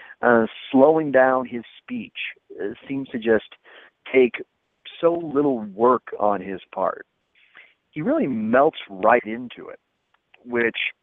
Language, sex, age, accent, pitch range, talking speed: English, male, 40-59, American, 120-175 Hz, 125 wpm